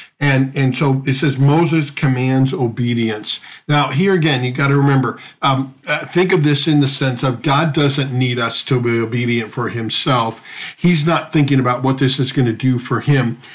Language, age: English, 50-69